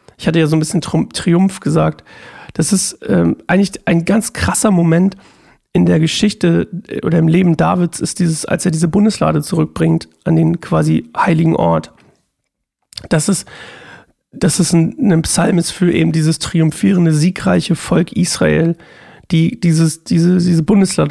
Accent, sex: German, male